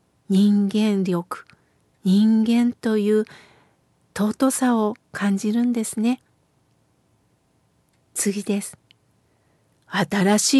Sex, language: female, Japanese